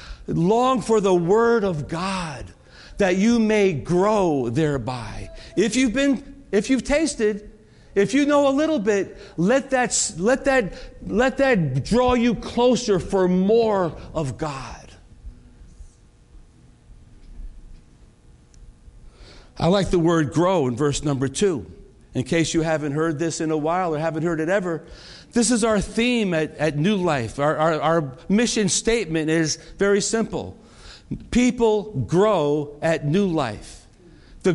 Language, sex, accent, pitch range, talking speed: English, male, American, 155-205 Hz, 140 wpm